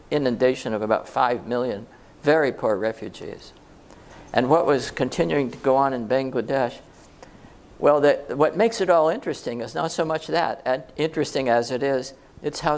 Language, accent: English, American